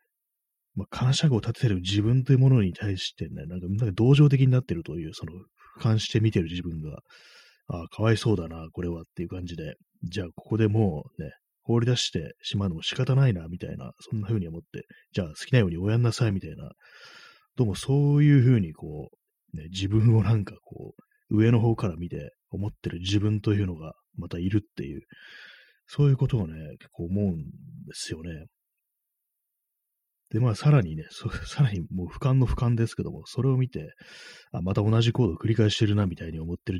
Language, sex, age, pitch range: Japanese, male, 30-49, 90-125 Hz